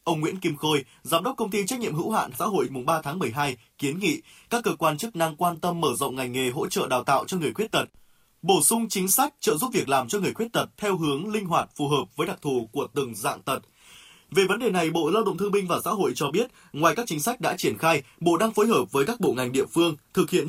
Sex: male